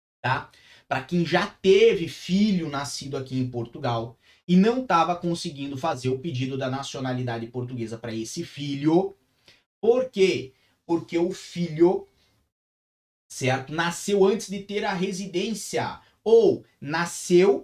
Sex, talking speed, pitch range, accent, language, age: male, 120 wpm, 130-195 Hz, Brazilian, Portuguese, 20-39